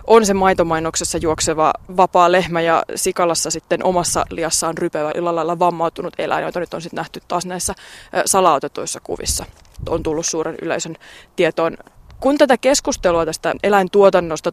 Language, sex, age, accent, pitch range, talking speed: Finnish, female, 20-39, native, 165-195 Hz, 140 wpm